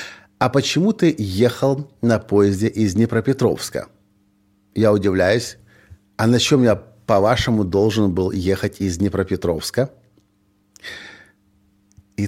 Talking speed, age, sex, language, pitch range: 105 wpm, 50-69, male, Russian, 100-130 Hz